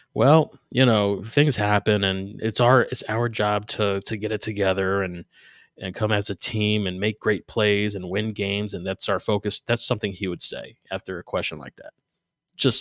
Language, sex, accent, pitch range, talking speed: English, male, American, 105-140 Hz, 205 wpm